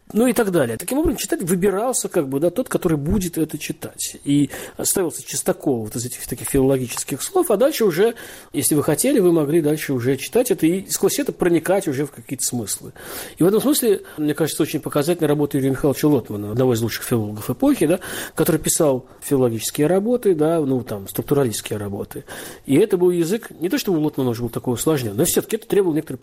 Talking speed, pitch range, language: 205 wpm, 120-170 Hz, Russian